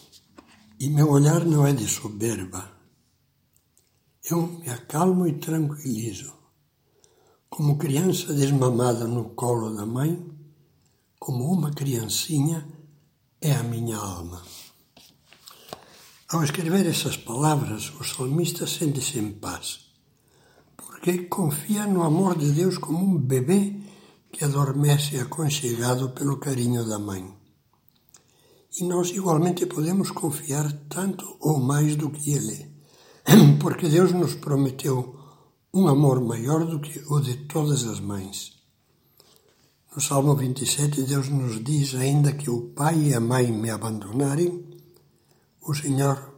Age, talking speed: 60-79, 120 wpm